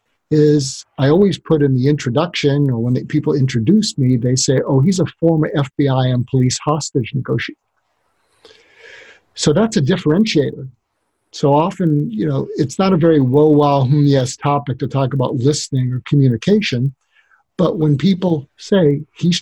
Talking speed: 155 wpm